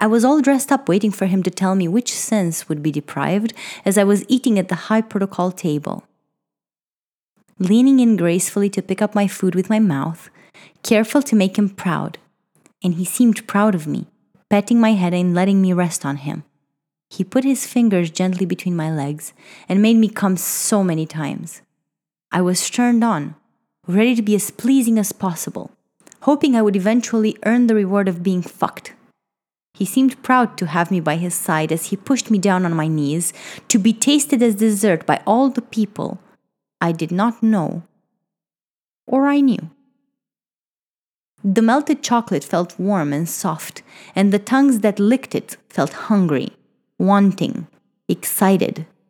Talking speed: 175 wpm